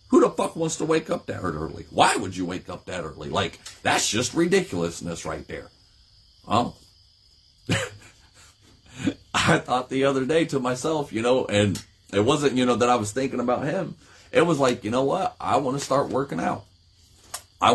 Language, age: English, 40-59